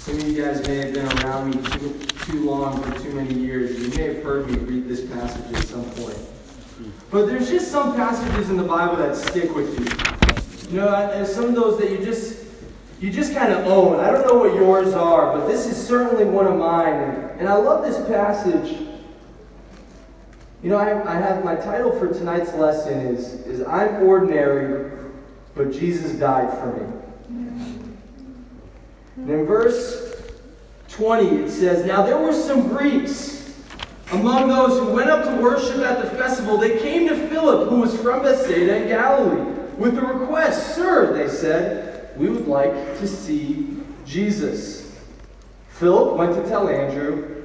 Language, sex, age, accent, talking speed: English, male, 20-39, American, 175 wpm